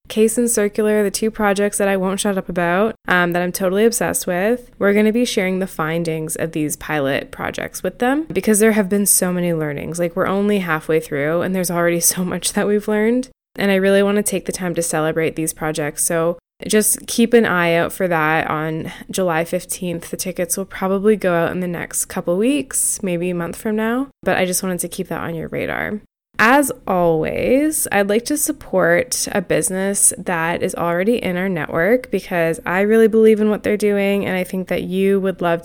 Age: 10-29